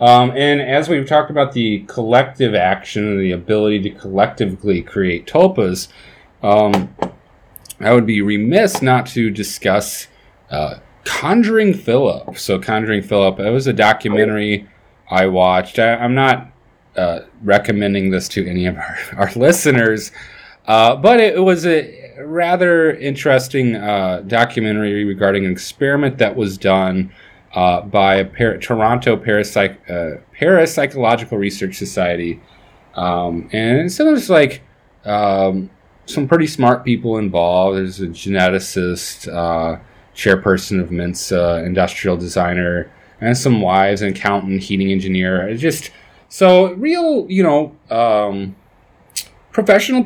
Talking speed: 125 wpm